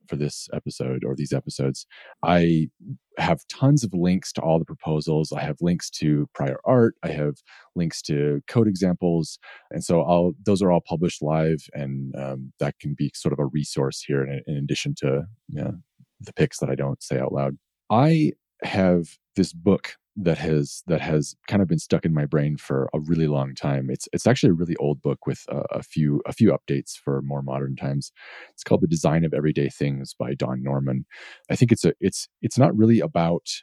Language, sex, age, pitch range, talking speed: English, male, 30-49, 70-90 Hz, 205 wpm